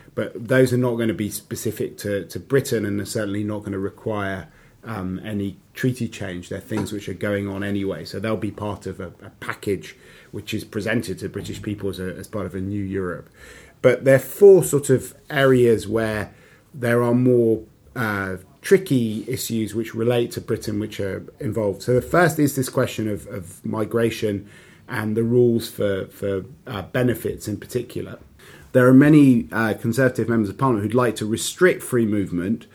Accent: British